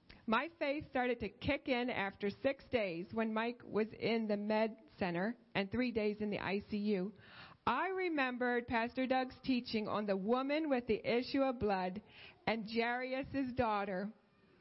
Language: English